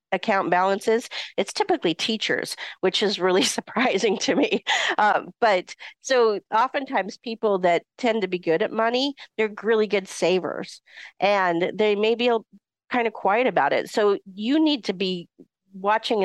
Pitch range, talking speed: 165-215 Hz, 155 wpm